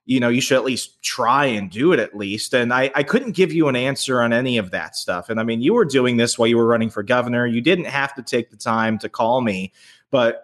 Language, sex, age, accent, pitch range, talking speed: English, male, 30-49, American, 115-140 Hz, 280 wpm